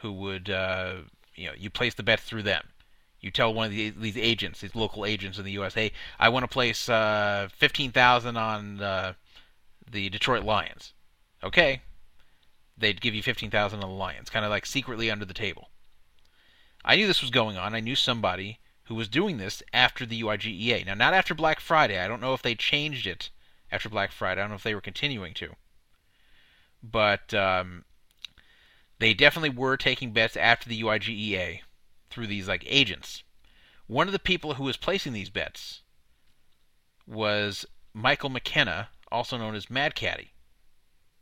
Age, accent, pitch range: 30-49, American, 95-125 Hz